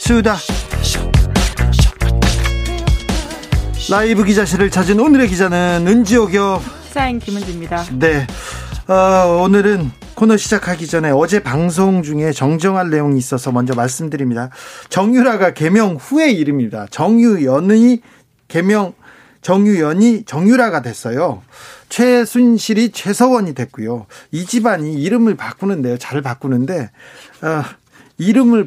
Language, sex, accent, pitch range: Korean, male, native, 130-210 Hz